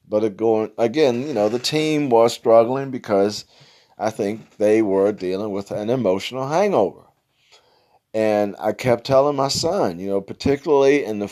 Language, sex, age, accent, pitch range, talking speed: English, male, 40-59, American, 105-130 Hz, 155 wpm